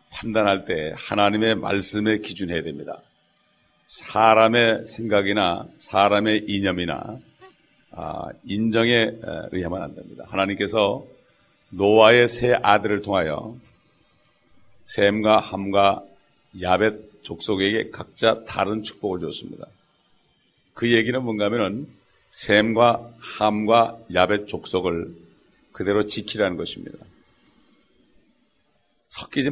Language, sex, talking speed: English, male, 75 wpm